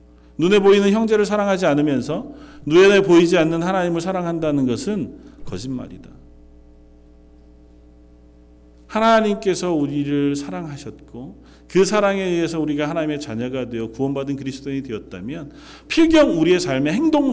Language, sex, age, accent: Korean, male, 40-59, native